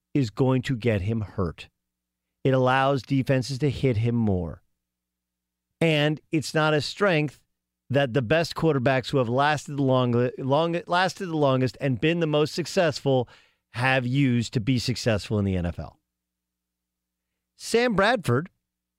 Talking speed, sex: 145 wpm, male